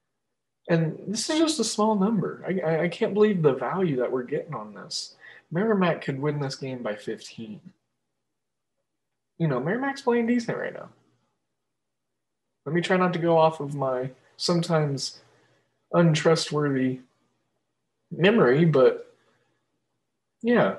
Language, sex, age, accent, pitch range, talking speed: English, male, 20-39, American, 140-180 Hz, 135 wpm